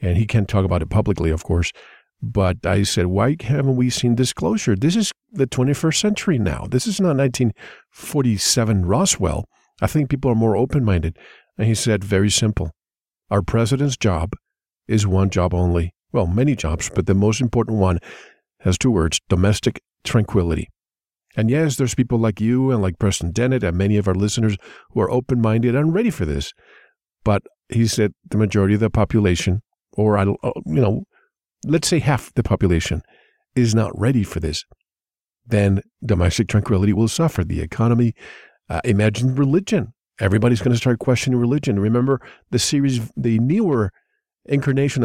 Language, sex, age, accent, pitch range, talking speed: English, male, 50-69, American, 100-130 Hz, 170 wpm